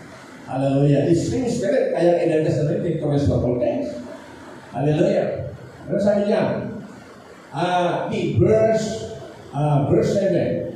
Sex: male